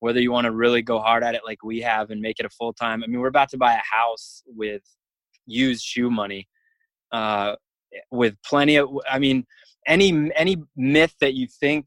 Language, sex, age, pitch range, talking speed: English, male, 20-39, 110-130 Hz, 210 wpm